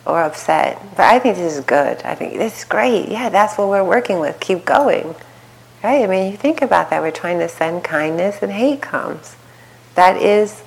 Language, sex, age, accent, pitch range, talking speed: English, female, 30-49, American, 155-190 Hz, 215 wpm